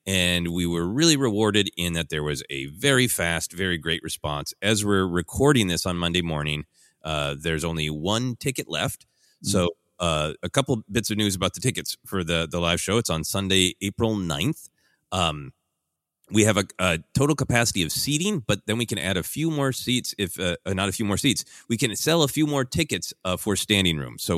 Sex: male